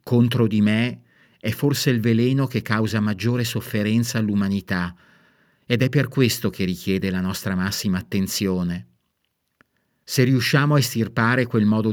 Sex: male